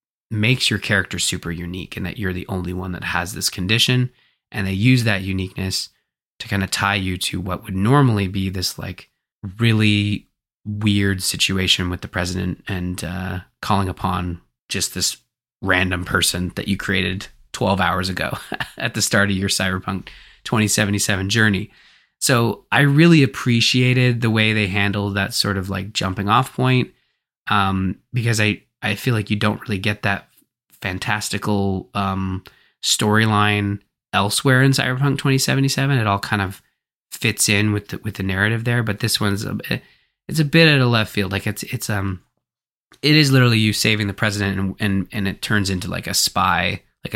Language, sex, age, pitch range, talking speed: English, male, 20-39, 95-110 Hz, 175 wpm